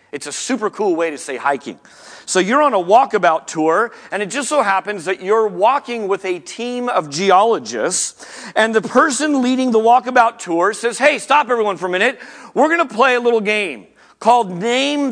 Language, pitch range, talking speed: English, 180-260 Hz, 195 wpm